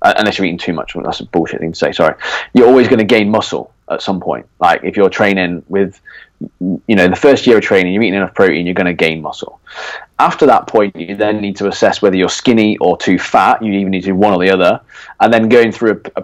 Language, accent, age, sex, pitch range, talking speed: English, British, 20-39, male, 90-105 Hz, 260 wpm